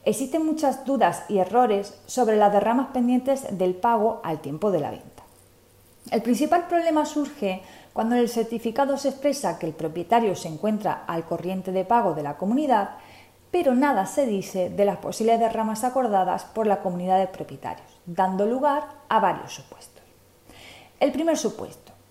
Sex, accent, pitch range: female, Spanish, 185-255 Hz